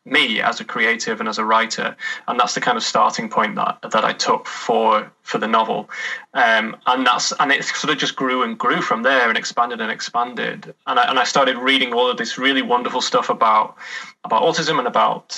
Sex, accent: male, British